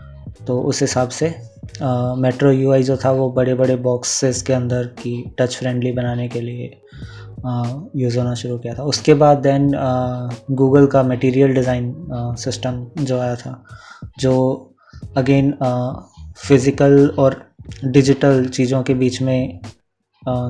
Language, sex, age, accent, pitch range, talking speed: Hindi, male, 20-39, native, 125-135 Hz, 135 wpm